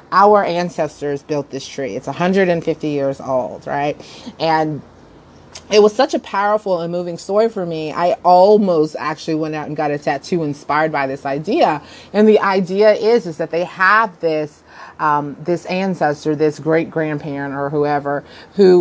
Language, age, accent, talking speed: English, 30-49, American, 165 wpm